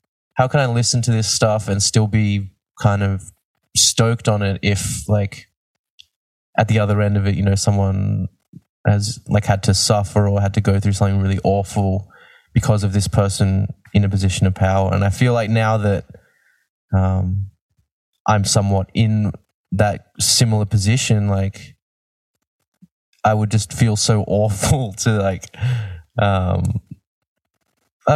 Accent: Australian